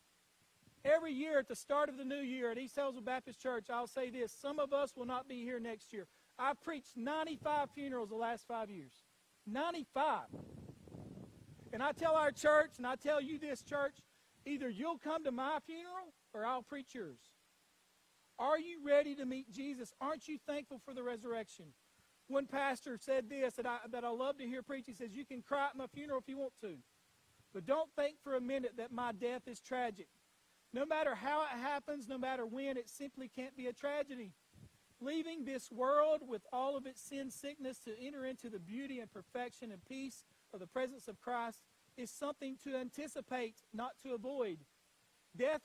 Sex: male